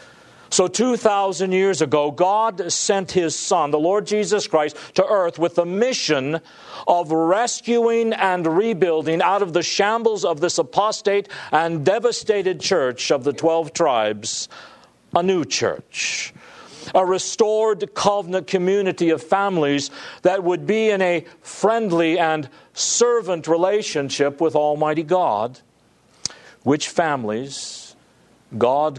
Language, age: English, 50-69